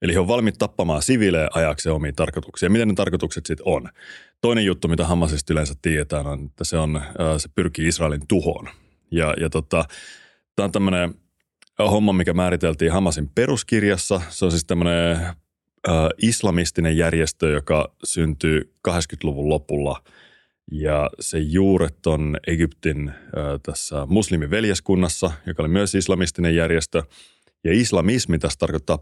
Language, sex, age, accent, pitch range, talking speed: Finnish, male, 30-49, native, 80-95 Hz, 140 wpm